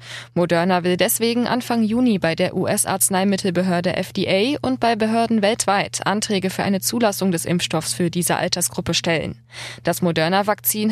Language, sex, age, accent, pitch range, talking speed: German, female, 20-39, German, 185-225 Hz, 135 wpm